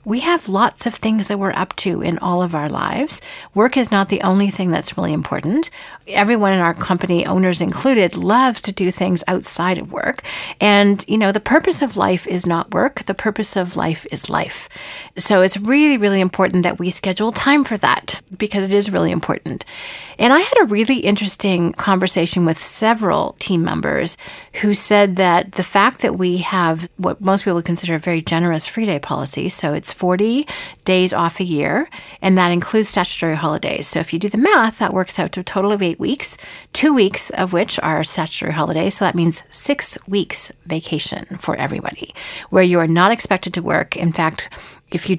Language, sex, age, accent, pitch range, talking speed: English, female, 40-59, American, 175-215 Hz, 200 wpm